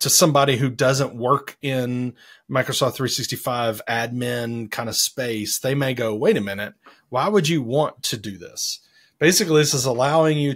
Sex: male